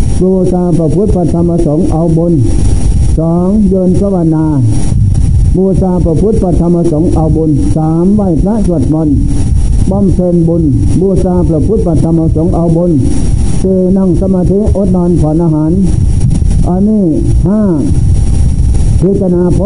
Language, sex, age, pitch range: Thai, male, 60-79, 150-185 Hz